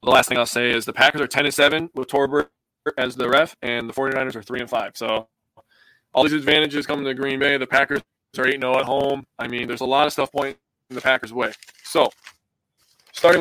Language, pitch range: English, 120-140 Hz